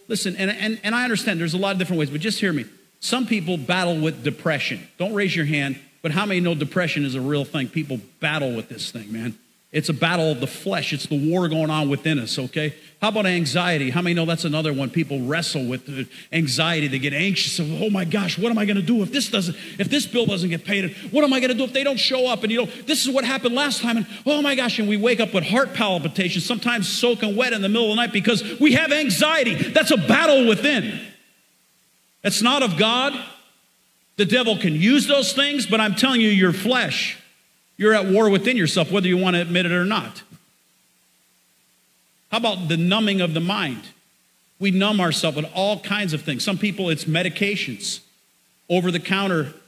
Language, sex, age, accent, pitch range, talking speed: English, male, 40-59, American, 165-220 Hz, 225 wpm